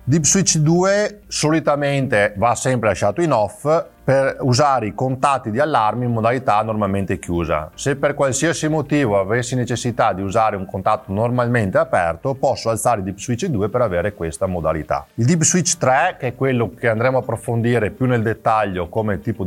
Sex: male